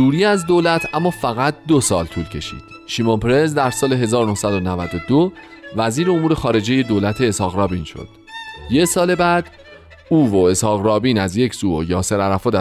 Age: 40-59